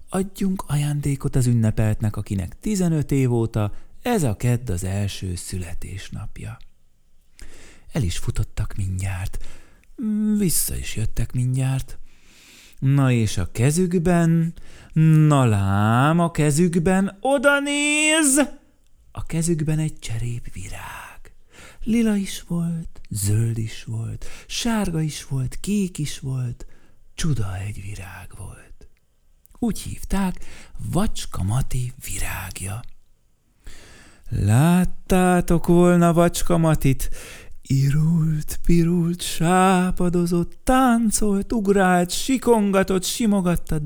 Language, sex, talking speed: Hungarian, male, 95 wpm